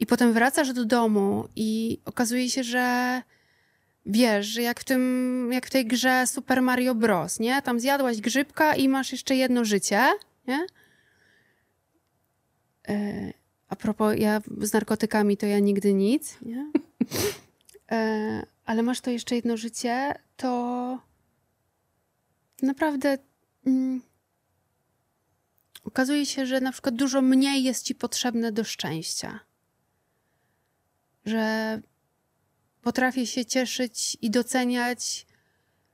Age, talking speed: 20-39, 115 wpm